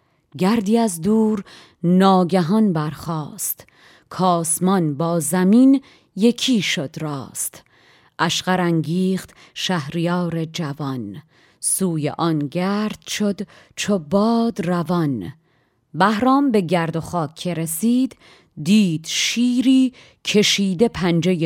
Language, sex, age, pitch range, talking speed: Persian, female, 30-49, 165-230 Hz, 90 wpm